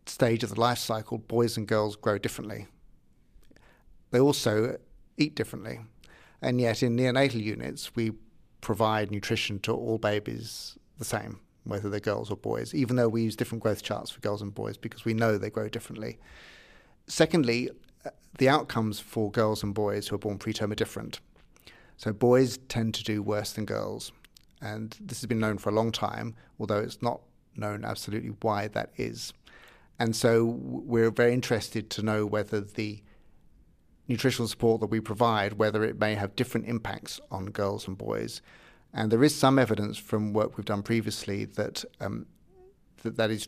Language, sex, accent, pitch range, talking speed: English, male, British, 105-120 Hz, 175 wpm